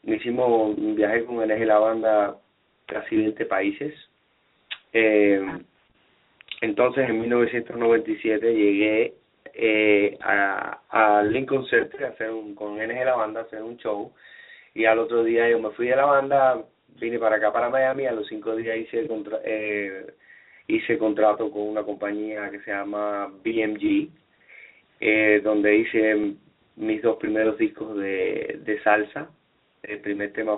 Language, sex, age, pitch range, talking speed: English, male, 30-49, 105-130 Hz, 155 wpm